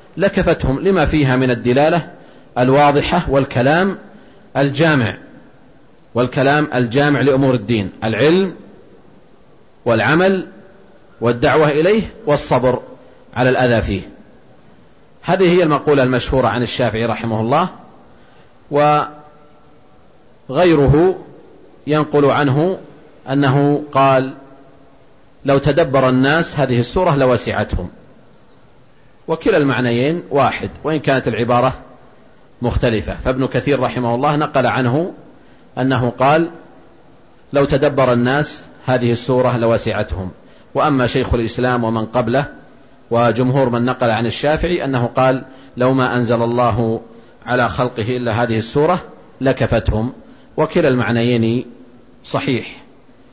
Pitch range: 120-150 Hz